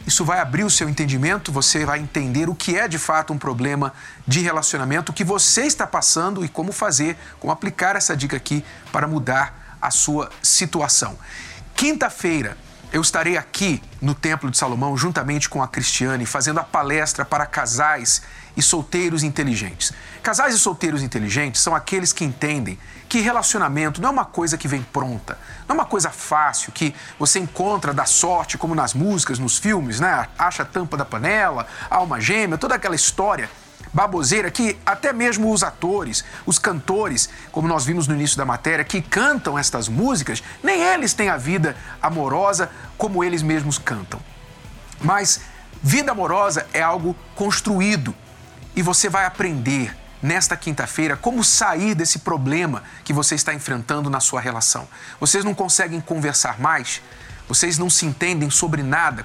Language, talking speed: Portuguese, 165 wpm